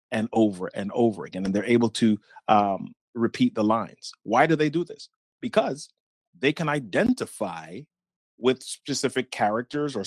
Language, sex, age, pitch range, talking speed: English, male, 30-49, 110-140 Hz, 155 wpm